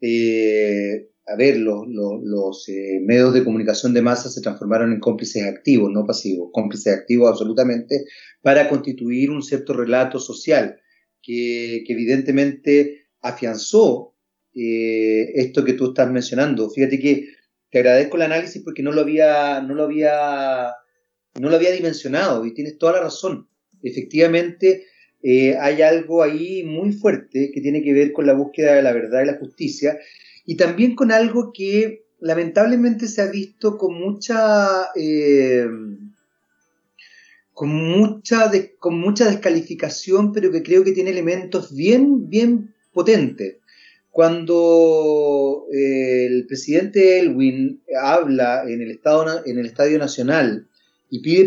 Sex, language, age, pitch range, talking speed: male, Spanish, 30-49, 125-185 Hz, 135 wpm